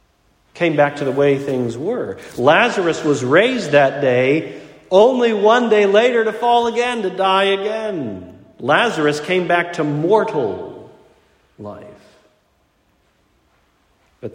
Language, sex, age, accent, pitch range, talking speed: English, male, 40-59, American, 110-175 Hz, 120 wpm